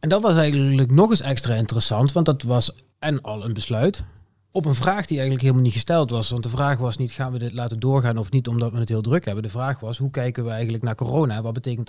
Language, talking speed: Dutch, 265 wpm